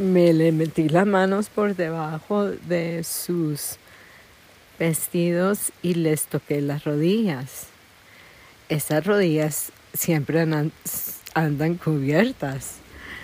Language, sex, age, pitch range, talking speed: English, female, 50-69, 140-175 Hz, 90 wpm